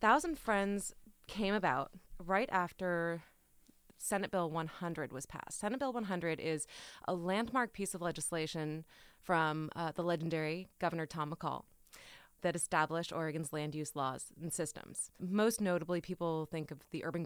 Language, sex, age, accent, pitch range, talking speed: English, female, 20-39, American, 155-195 Hz, 145 wpm